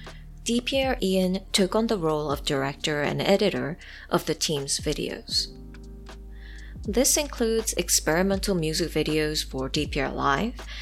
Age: 20-39